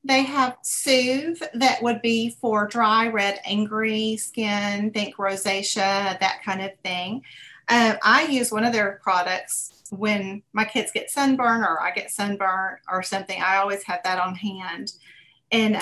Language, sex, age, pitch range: English, female, 40-59, 195-235 Hz